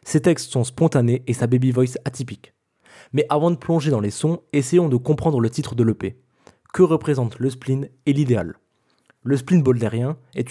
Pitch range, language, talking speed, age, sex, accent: 120-150 Hz, French, 190 wpm, 20-39, male, French